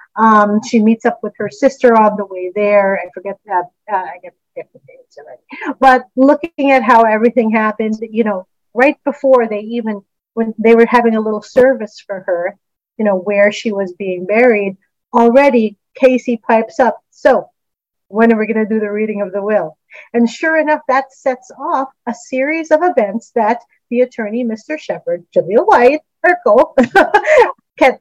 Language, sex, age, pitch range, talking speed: English, female, 40-59, 210-265 Hz, 175 wpm